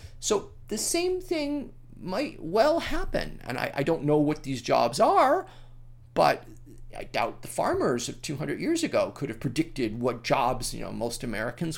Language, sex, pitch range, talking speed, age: English, male, 120-165 Hz, 175 wpm, 30-49